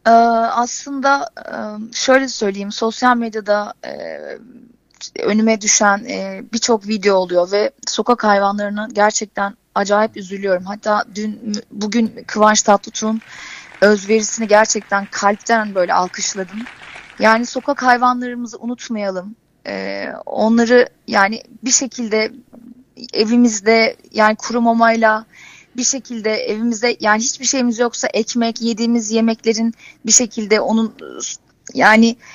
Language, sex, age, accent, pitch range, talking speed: Turkish, female, 30-49, native, 215-245 Hz, 95 wpm